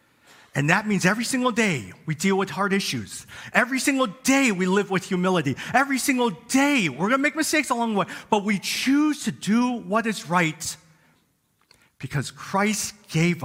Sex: male